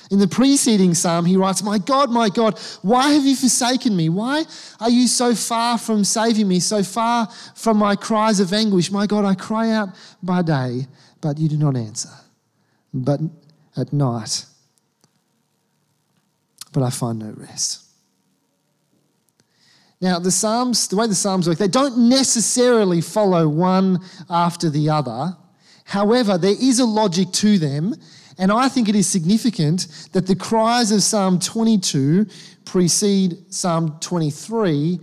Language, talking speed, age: English, 150 wpm, 40-59